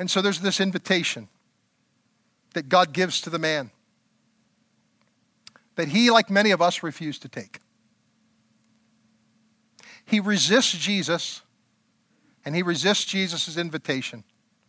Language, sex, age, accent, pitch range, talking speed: English, male, 50-69, American, 160-215 Hz, 115 wpm